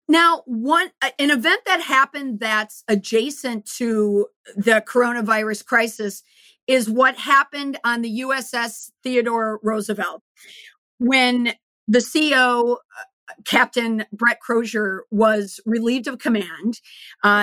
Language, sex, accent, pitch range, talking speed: English, female, American, 210-250 Hz, 115 wpm